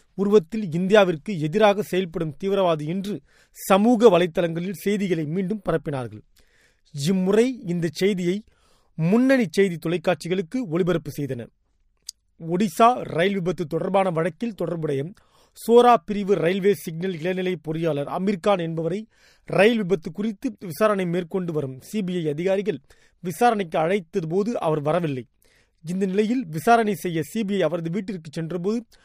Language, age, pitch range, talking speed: Tamil, 30-49, 165-205 Hz, 60 wpm